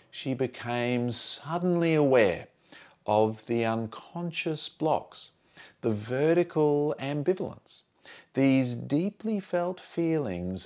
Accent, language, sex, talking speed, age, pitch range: Australian, English, male, 85 wpm, 40-59, 115-160 Hz